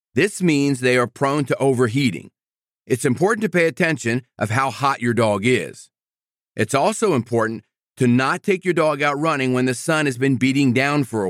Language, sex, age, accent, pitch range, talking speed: English, male, 40-59, American, 125-170 Hz, 195 wpm